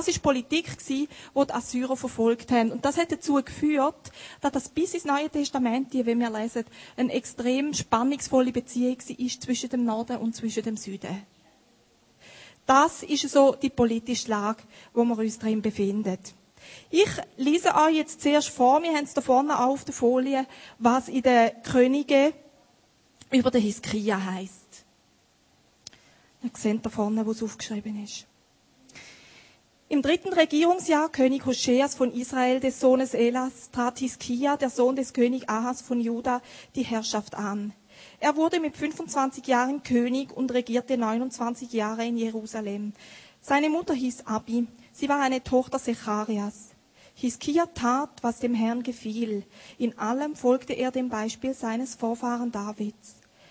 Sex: female